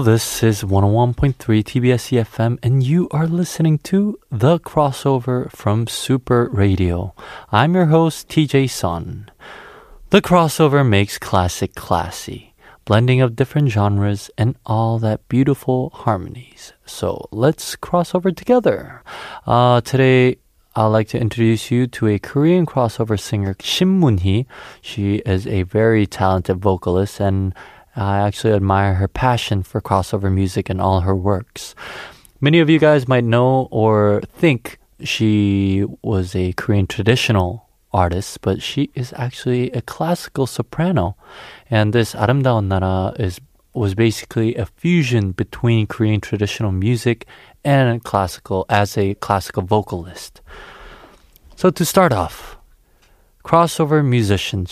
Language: Korean